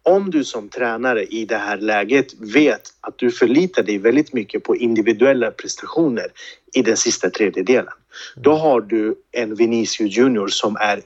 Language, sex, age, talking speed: Swedish, male, 40-59, 165 wpm